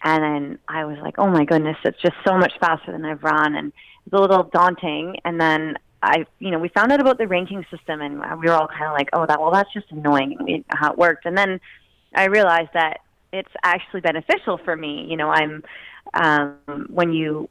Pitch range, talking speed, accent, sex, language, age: 160-190 Hz, 230 wpm, American, female, English, 30-49